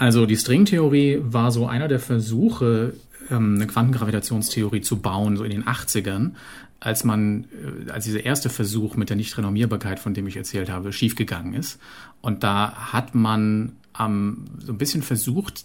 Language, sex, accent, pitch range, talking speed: German, male, German, 105-125 Hz, 155 wpm